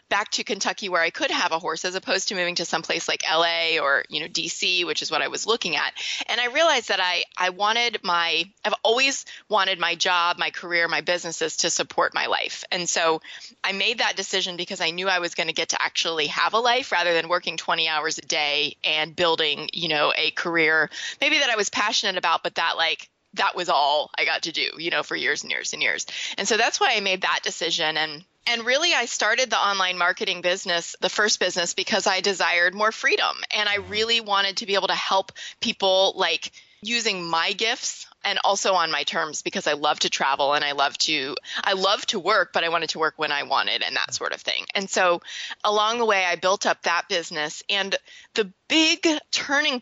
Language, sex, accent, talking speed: English, female, American, 230 wpm